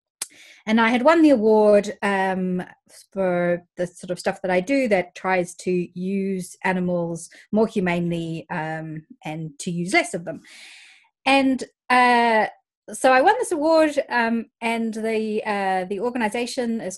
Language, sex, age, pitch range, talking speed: English, female, 20-39, 180-235 Hz, 150 wpm